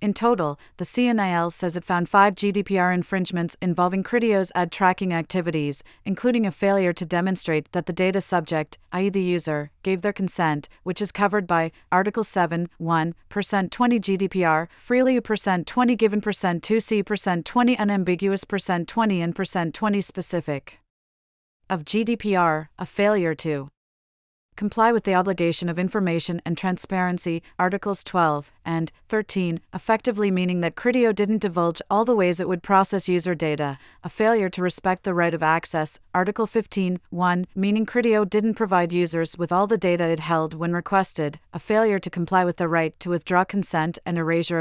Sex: female